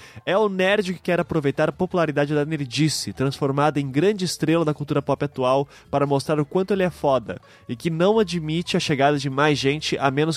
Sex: male